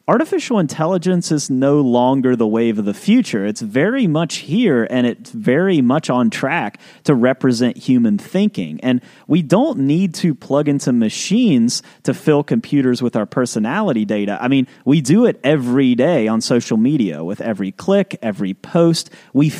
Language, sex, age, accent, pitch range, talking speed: English, male, 30-49, American, 115-190 Hz, 170 wpm